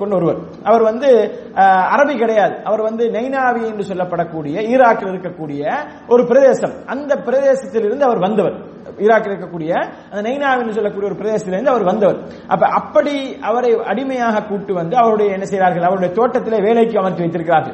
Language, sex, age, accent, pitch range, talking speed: English, male, 30-49, Indian, 190-245 Hz, 145 wpm